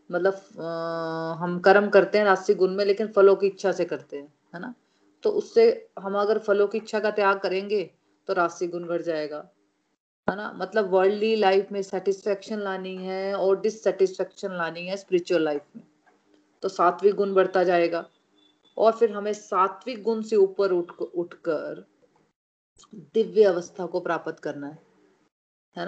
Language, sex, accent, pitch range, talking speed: Hindi, female, native, 180-215 Hz, 160 wpm